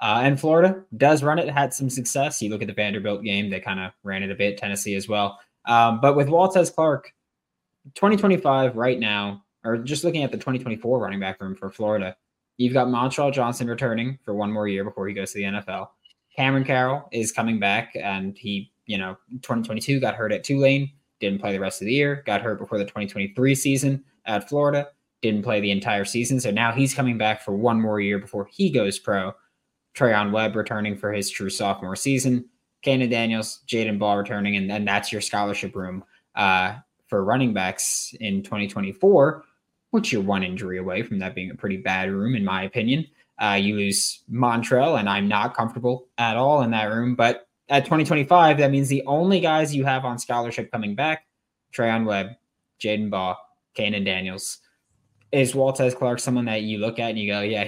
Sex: male